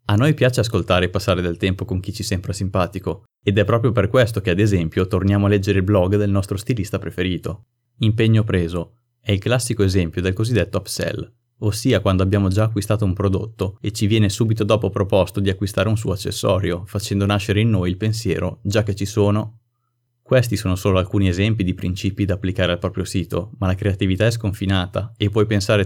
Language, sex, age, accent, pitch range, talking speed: Italian, male, 30-49, native, 90-110 Hz, 200 wpm